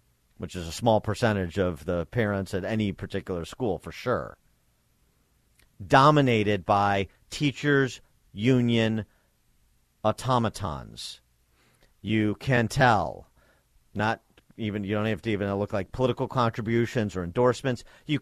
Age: 40-59